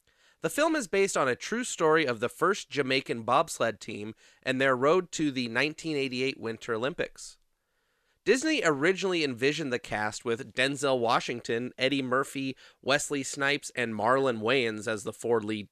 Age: 30-49